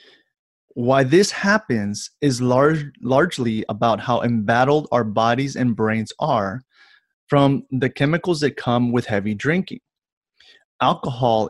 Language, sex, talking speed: English, male, 115 wpm